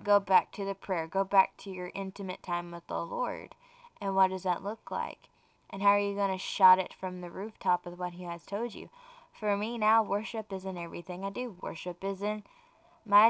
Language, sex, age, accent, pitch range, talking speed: English, female, 10-29, American, 185-230 Hz, 225 wpm